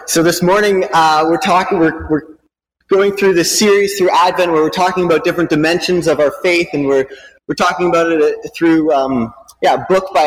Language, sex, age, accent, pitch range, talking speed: English, male, 30-49, American, 140-180 Hz, 205 wpm